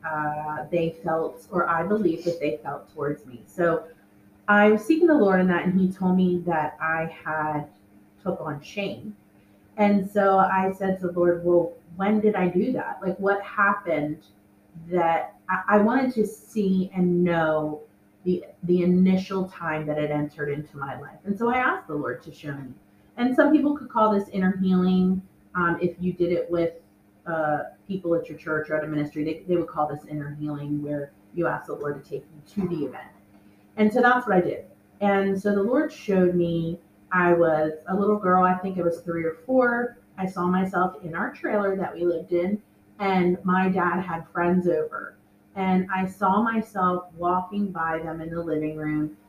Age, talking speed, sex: 30-49, 200 wpm, female